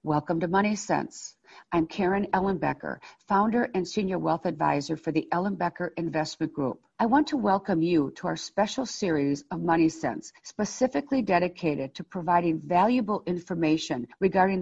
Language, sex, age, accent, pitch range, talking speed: English, female, 50-69, American, 165-215 Hz, 150 wpm